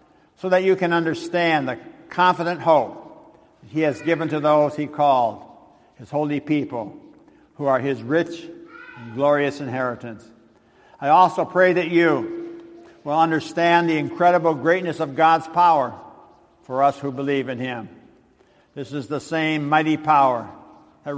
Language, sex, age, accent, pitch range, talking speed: English, male, 60-79, American, 145-170 Hz, 145 wpm